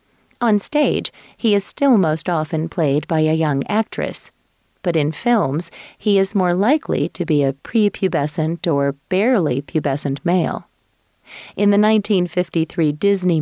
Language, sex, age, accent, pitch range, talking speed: English, female, 40-59, American, 150-200 Hz, 140 wpm